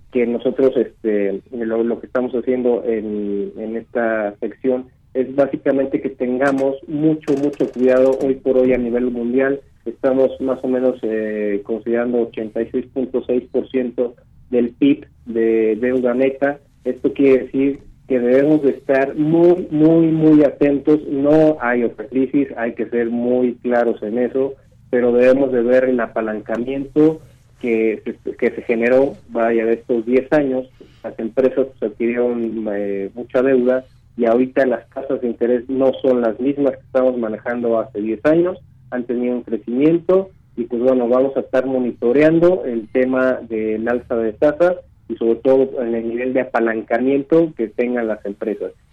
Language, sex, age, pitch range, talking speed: Spanish, male, 40-59, 115-140 Hz, 155 wpm